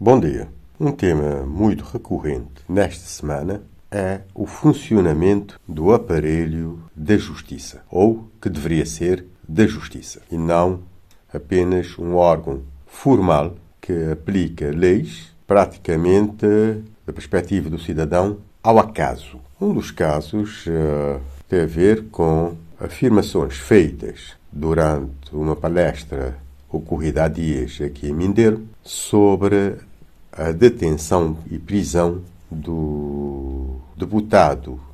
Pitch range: 80-100 Hz